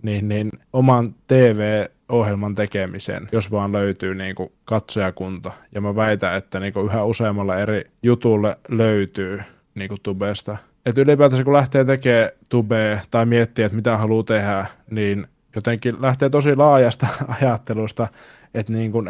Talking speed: 140 wpm